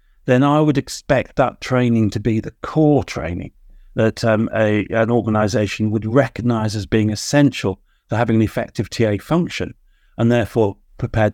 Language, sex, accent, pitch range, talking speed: English, male, British, 105-135 Hz, 155 wpm